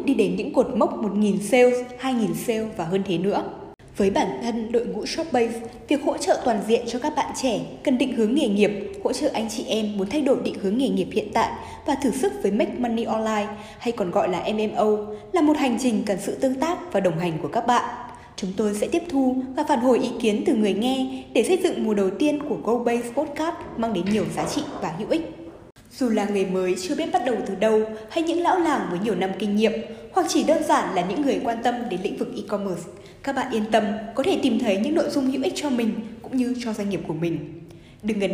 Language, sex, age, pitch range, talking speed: Vietnamese, female, 20-39, 210-280 Hz, 250 wpm